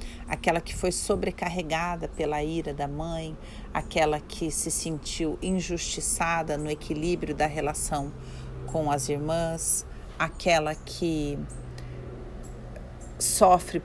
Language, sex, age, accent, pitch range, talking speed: Portuguese, female, 40-59, Brazilian, 145-195 Hz, 100 wpm